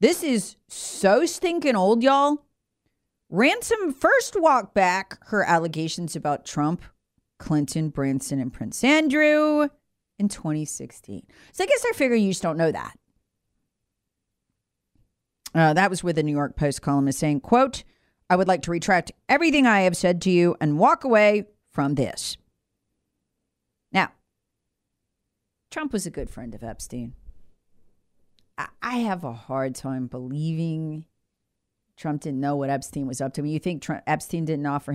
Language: English